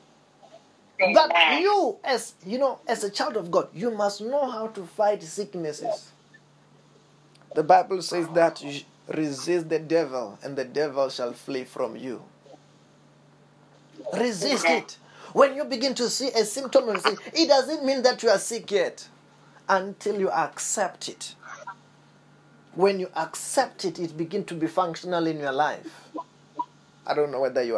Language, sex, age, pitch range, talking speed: English, male, 30-49, 175-275 Hz, 155 wpm